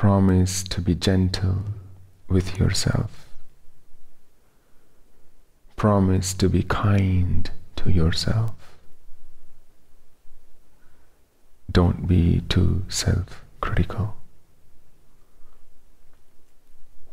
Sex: male